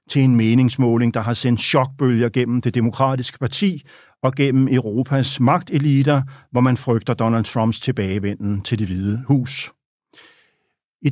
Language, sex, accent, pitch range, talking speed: Danish, male, native, 120-140 Hz, 140 wpm